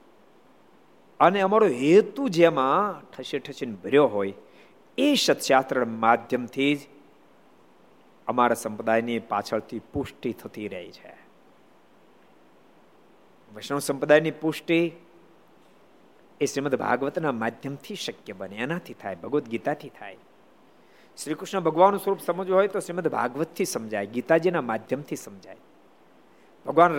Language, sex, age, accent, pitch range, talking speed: Gujarati, male, 50-69, native, 130-190 Hz, 100 wpm